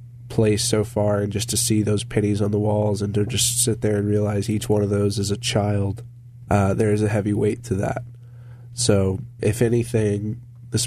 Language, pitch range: English, 100-120 Hz